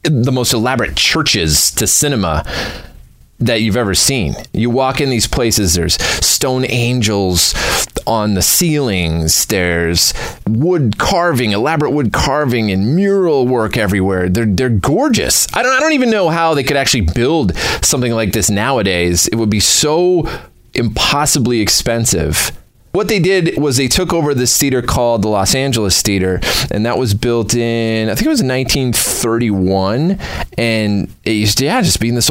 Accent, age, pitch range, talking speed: American, 30-49, 95-135 Hz, 165 wpm